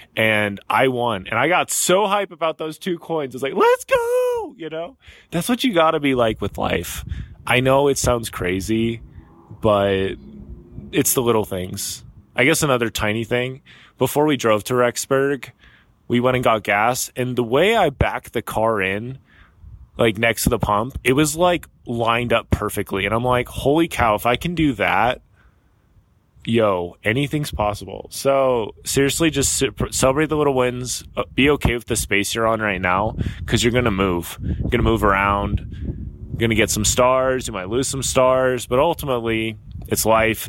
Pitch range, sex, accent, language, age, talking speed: 100-130 Hz, male, American, English, 20-39, 190 wpm